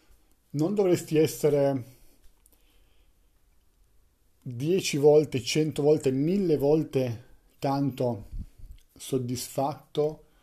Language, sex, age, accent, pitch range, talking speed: Italian, male, 40-59, native, 120-145 Hz, 65 wpm